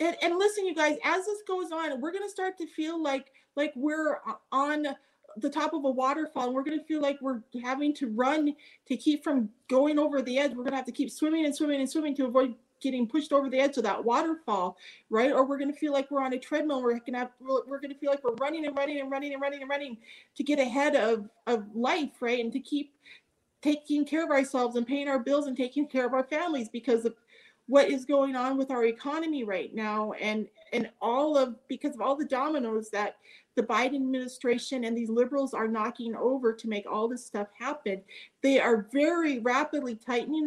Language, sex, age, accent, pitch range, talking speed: English, female, 40-59, American, 240-290 Hz, 225 wpm